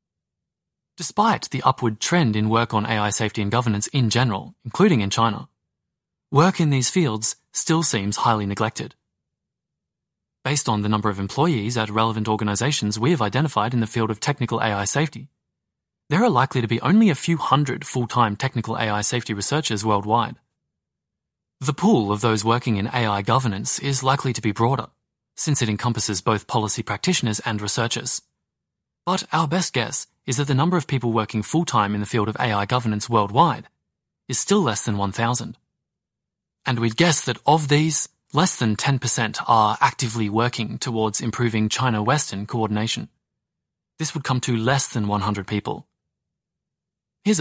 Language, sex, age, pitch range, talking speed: English, male, 20-39, 110-135 Hz, 165 wpm